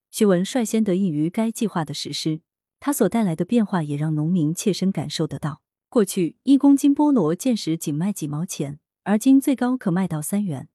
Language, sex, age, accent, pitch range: Chinese, female, 20-39, native, 160-220 Hz